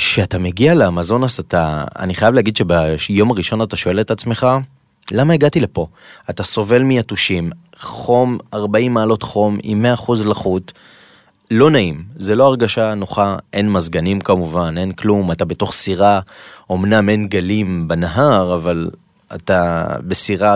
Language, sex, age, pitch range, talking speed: Hebrew, male, 20-39, 90-110 Hz, 135 wpm